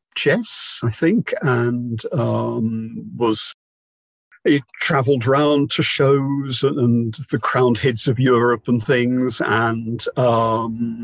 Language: English